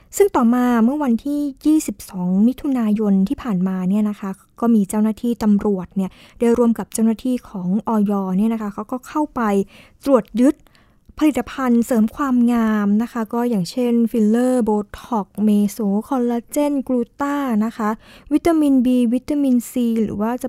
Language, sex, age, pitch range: Thai, female, 20-39, 205-245 Hz